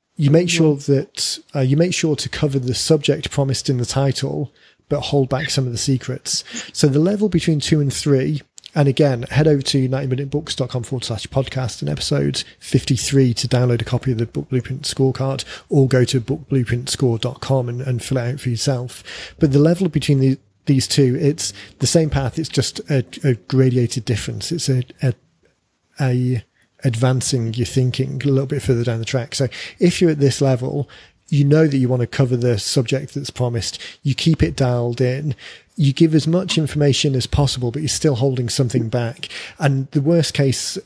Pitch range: 125-145 Hz